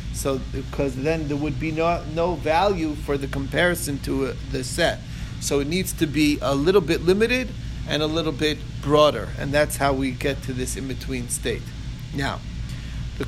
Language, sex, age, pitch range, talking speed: English, male, 40-59, 135-165 Hz, 180 wpm